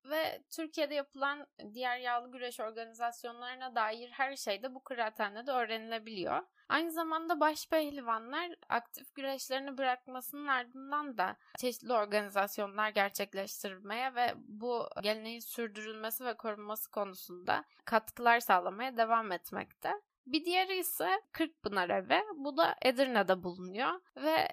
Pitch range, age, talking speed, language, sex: 215-290 Hz, 10-29, 115 wpm, Turkish, female